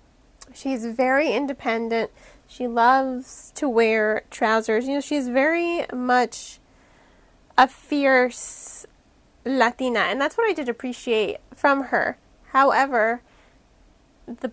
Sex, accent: female, American